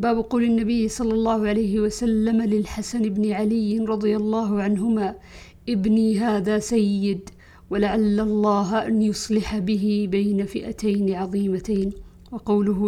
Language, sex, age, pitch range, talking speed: Arabic, female, 50-69, 205-230 Hz, 115 wpm